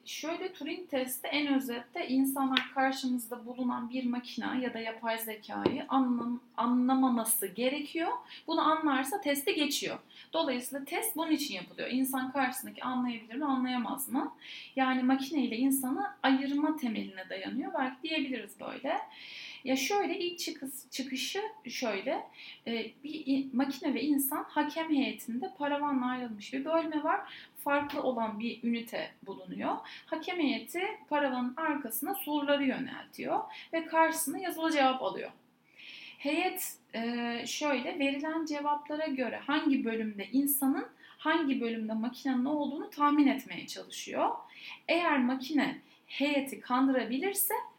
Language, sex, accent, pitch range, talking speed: Turkish, female, native, 240-300 Hz, 115 wpm